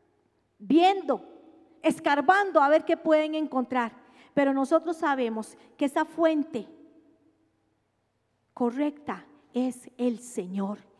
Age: 40-59